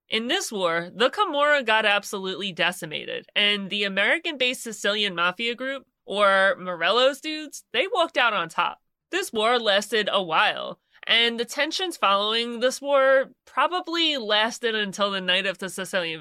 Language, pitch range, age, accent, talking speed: English, 190-260 Hz, 30-49, American, 150 wpm